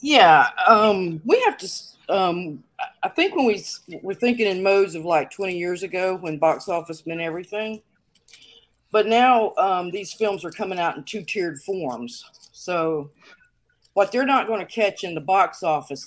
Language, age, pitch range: English, 50-69, 150-195 Hz